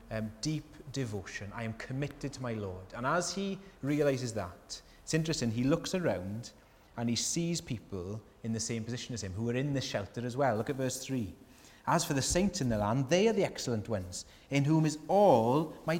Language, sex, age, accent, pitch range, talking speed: English, male, 30-49, British, 110-160 Hz, 215 wpm